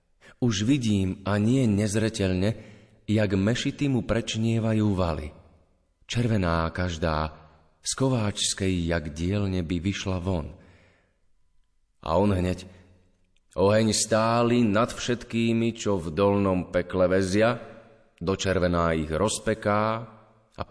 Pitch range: 90-115 Hz